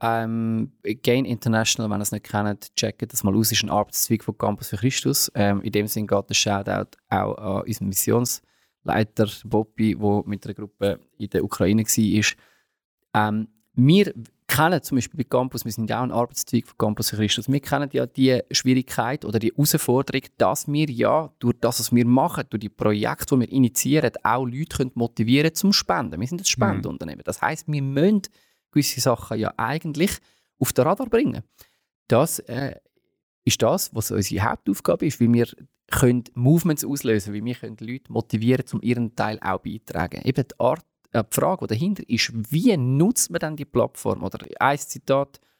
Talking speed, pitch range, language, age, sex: 190 wpm, 110-140 Hz, German, 30-49, male